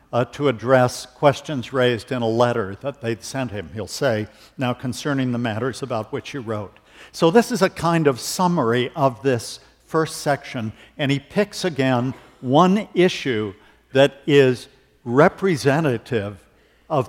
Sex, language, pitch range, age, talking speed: male, English, 115-145 Hz, 60-79, 150 wpm